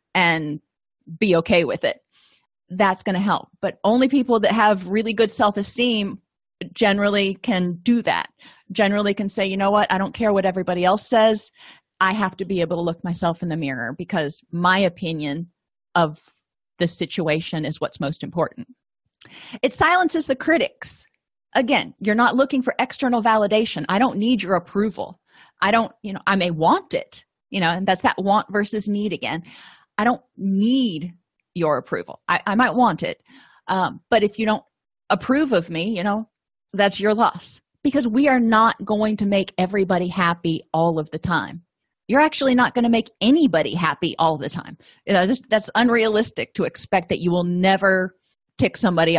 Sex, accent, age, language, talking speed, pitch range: female, American, 30-49, English, 180 wpm, 175-230 Hz